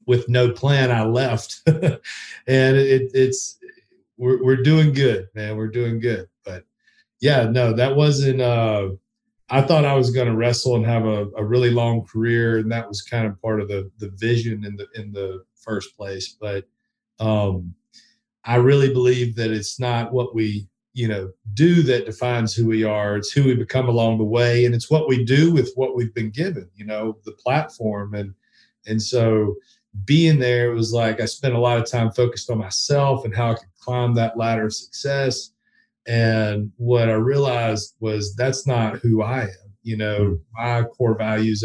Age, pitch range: 40-59, 110-130 Hz